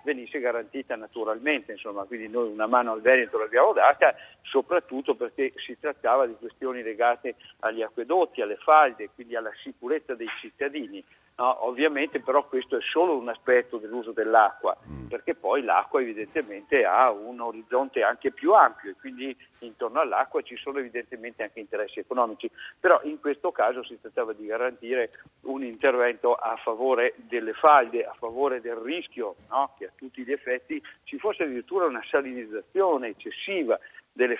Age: 60-79